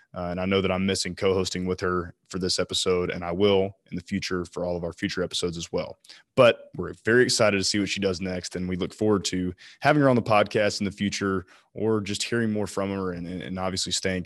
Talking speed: 255 wpm